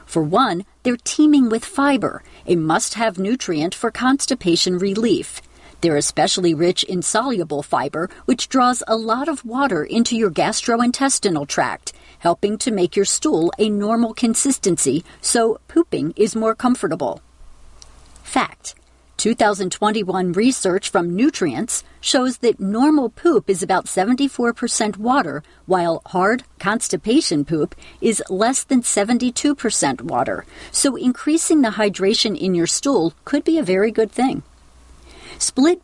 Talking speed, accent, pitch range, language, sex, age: 130 wpm, American, 180-250 Hz, English, female, 40-59